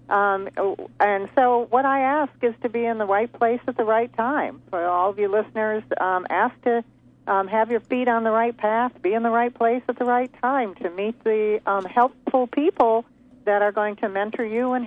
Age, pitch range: 50-69, 180-225 Hz